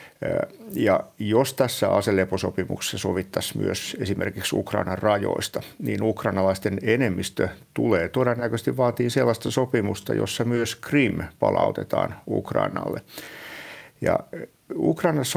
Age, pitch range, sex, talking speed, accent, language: 60-79, 100-135 Hz, male, 95 wpm, native, Finnish